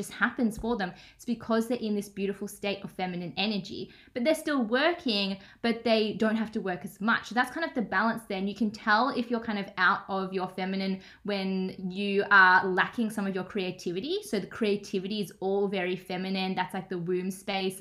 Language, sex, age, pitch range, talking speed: English, female, 20-39, 190-225 Hz, 210 wpm